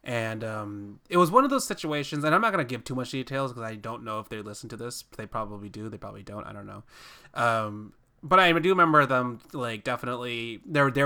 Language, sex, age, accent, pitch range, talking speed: English, male, 20-39, American, 115-145 Hz, 245 wpm